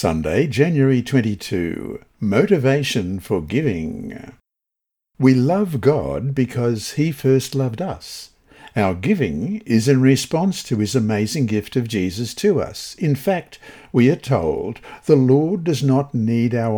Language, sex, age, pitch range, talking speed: English, male, 60-79, 110-145 Hz, 135 wpm